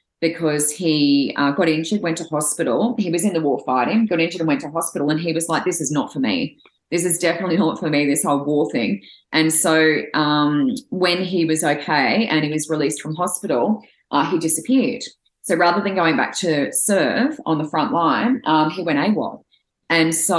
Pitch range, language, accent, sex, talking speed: 155-190 Hz, English, Australian, female, 210 wpm